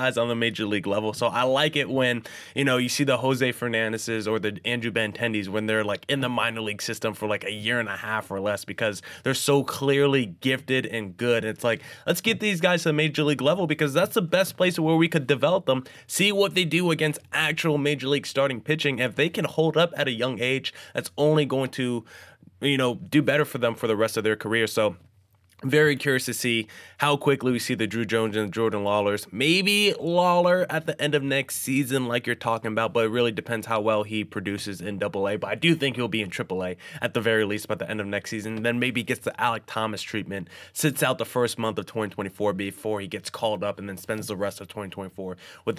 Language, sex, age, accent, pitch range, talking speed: English, male, 20-39, American, 105-140 Hz, 240 wpm